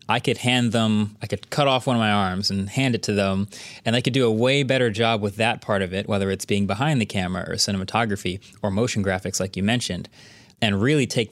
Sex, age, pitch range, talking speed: male, 20-39, 100-120 Hz, 250 wpm